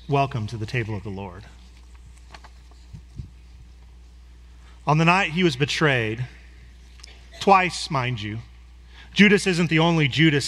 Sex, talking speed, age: male, 120 wpm, 40-59